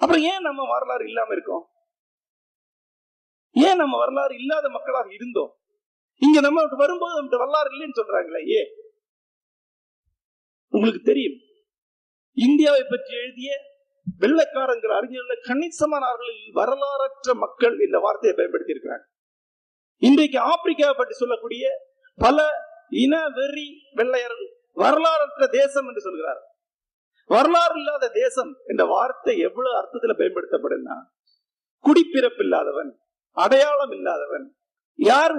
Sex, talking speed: male, 95 wpm